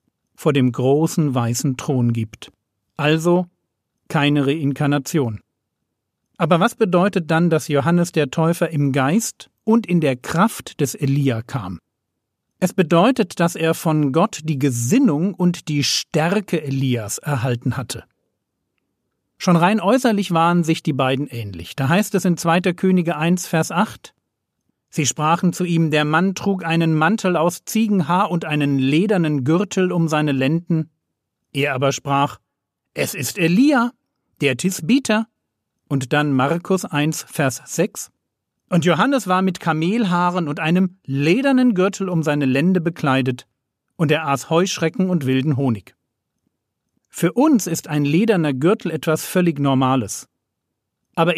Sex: male